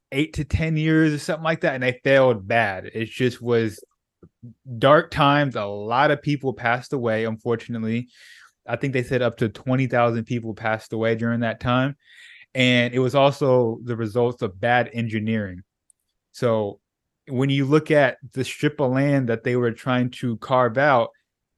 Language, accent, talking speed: English, American, 175 wpm